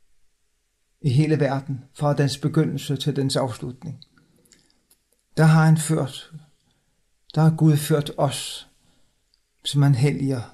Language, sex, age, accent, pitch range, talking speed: Danish, male, 60-79, native, 135-160 Hz, 120 wpm